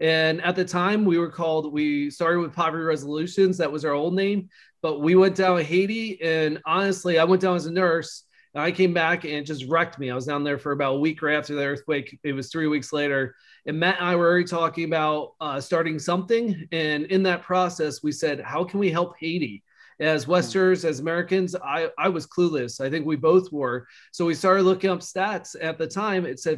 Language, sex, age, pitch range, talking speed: English, male, 30-49, 150-180 Hz, 235 wpm